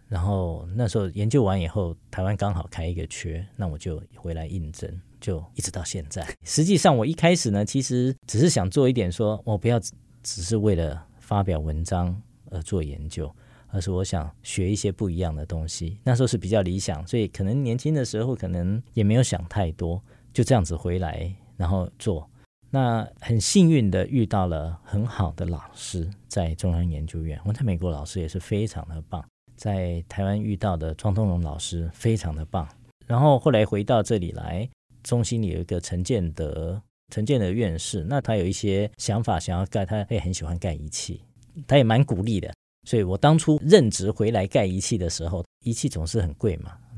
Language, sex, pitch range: Chinese, male, 90-120 Hz